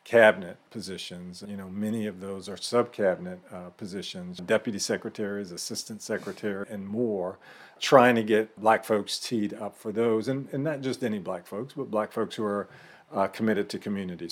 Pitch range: 100-125 Hz